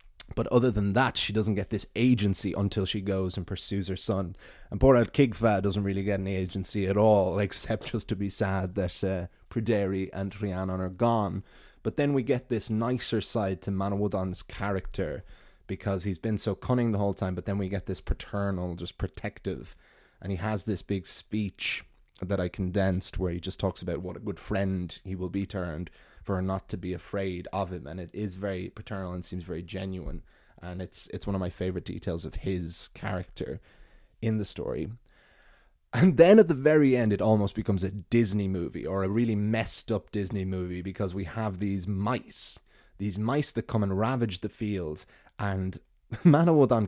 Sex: male